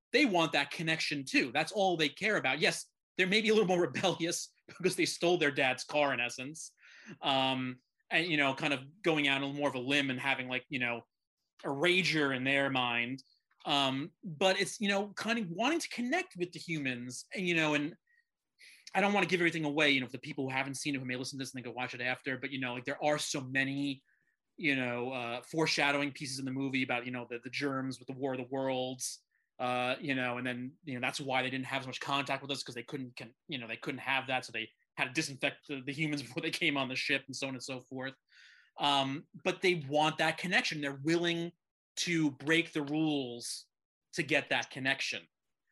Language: English